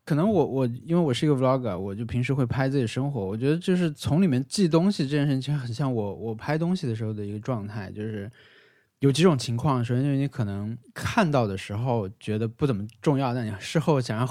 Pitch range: 115-150 Hz